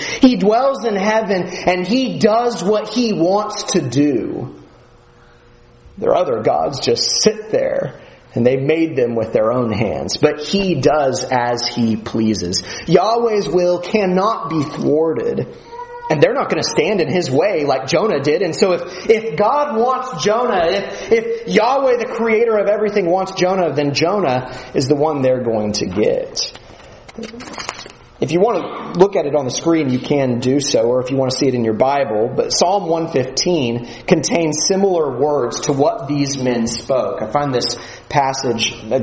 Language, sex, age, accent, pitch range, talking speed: English, male, 30-49, American, 130-210 Hz, 175 wpm